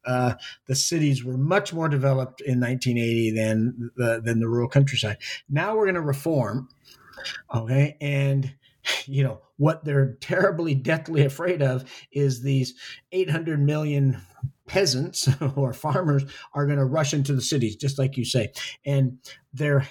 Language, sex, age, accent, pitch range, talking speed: English, male, 50-69, American, 130-145 Hz, 150 wpm